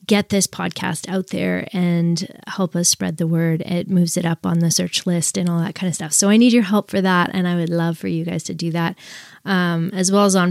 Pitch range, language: 165-190 Hz, English